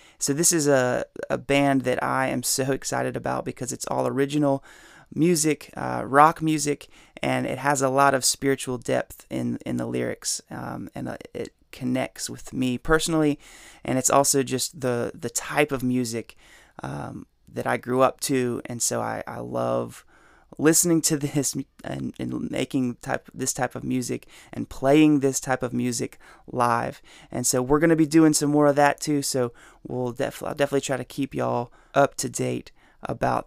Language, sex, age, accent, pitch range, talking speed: English, male, 30-49, American, 125-155 Hz, 185 wpm